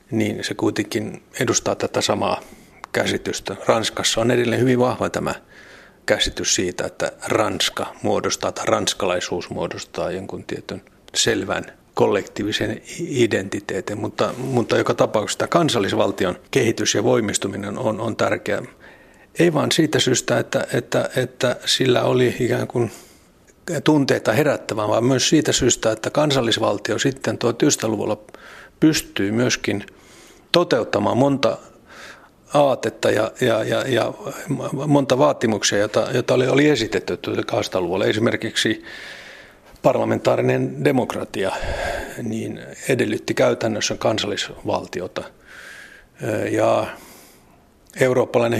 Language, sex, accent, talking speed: Finnish, male, native, 105 wpm